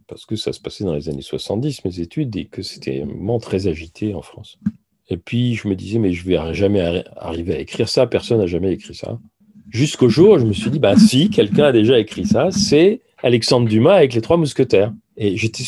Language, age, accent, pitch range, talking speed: French, 40-59, French, 100-125 Hz, 235 wpm